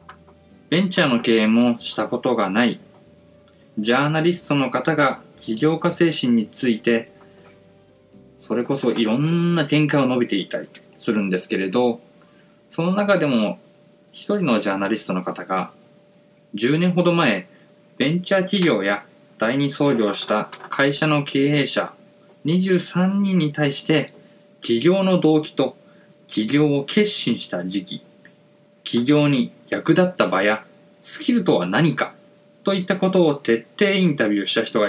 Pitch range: 130-195 Hz